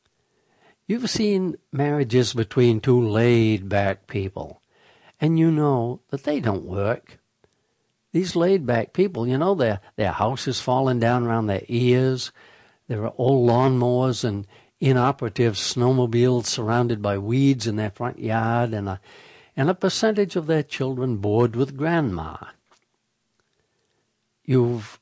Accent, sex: American, male